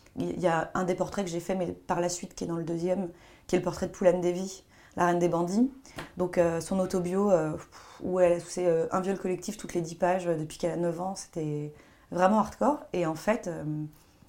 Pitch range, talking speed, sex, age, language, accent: 170-195 Hz, 245 wpm, female, 30-49, French, French